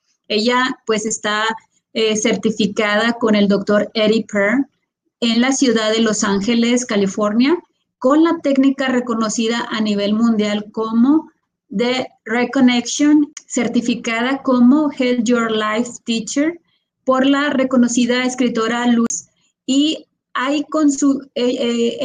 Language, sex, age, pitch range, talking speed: English, female, 30-49, 215-260 Hz, 120 wpm